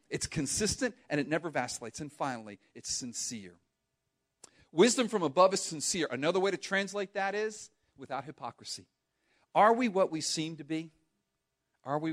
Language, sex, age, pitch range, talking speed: English, male, 40-59, 140-200 Hz, 160 wpm